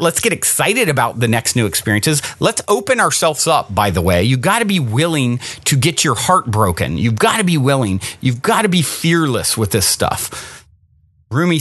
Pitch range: 115-160 Hz